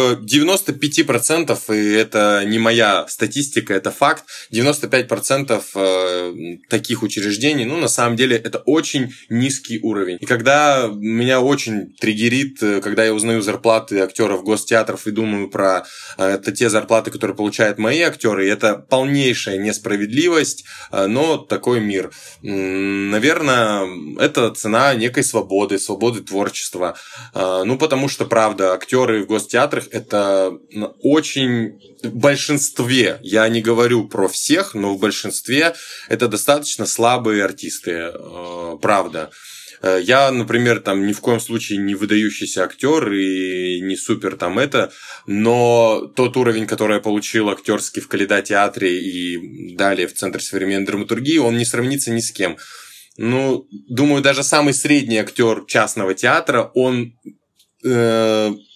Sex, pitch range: male, 100-125 Hz